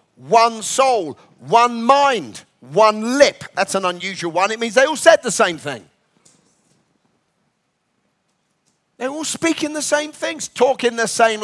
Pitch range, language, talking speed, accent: 175-230 Hz, English, 140 wpm, British